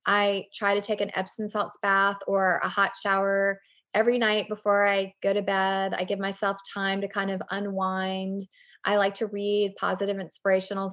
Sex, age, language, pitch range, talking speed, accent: female, 20-39, English, 195-215 Hz, 180 wpm, American